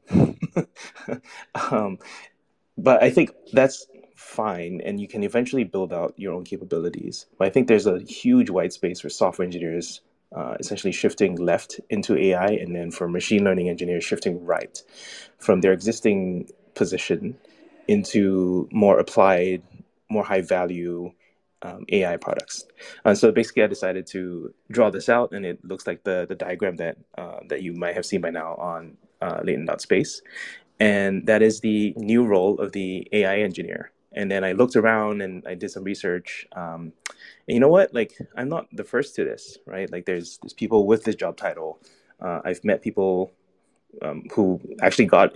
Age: 20-39